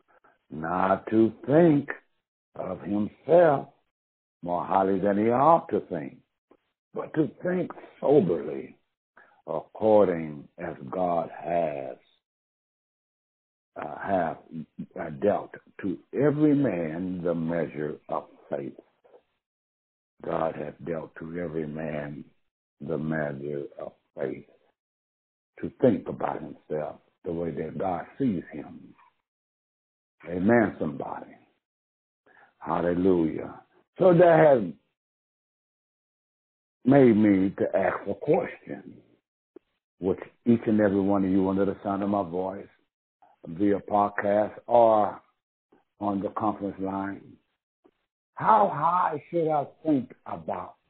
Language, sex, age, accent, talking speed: English, male, 60-79, American, 105 wpm